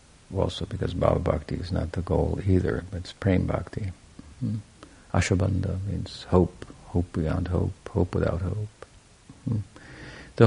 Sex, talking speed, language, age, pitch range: male, 140 wpm, English, 50-69, 80-100 Hz